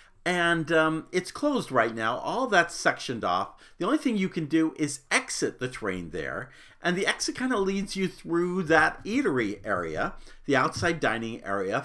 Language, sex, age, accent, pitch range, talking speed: English, male, 50-69, American, 120-180 Hz, 180 wpm